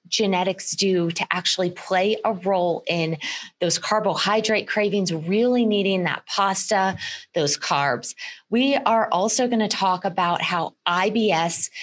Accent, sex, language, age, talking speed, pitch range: American, female, English, 30-49, 130 wpm, 175-220 Hz